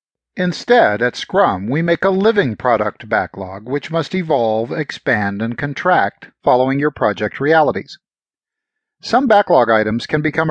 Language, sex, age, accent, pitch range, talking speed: English, male, 50-69, American, 120-165 Hz, 135 wpm